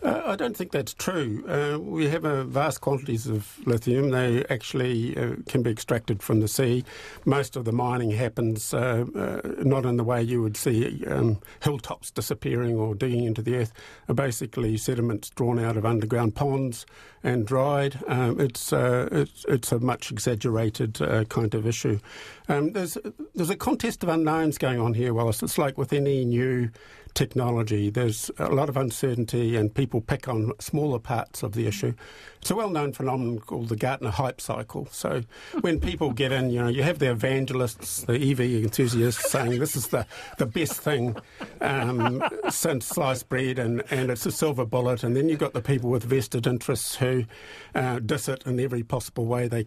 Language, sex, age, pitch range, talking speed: English, male, 50-69, 115-140 Hz, 190 wpm